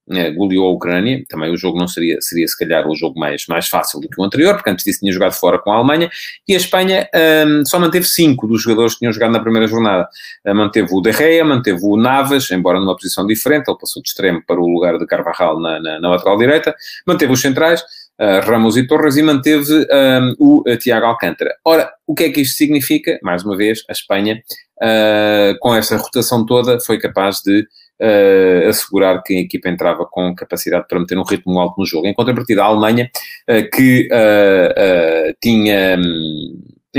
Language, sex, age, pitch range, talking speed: Portuguese, male, 30-49, 95-145 Hz, 200 wpm